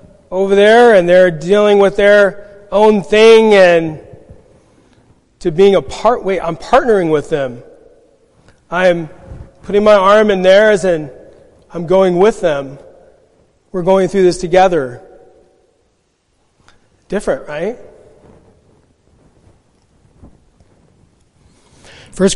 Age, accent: 40-59, American